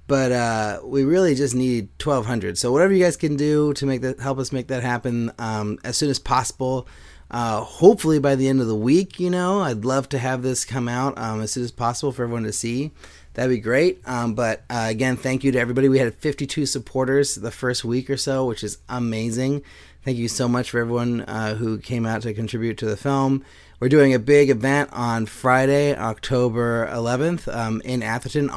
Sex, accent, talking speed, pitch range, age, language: male, American, 215 wpm, 115-135 Hz, 30-49, English